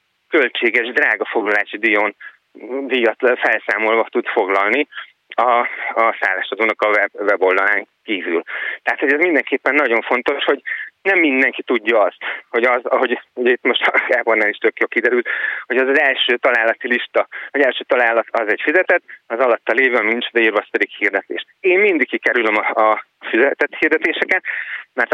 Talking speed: 150 wpm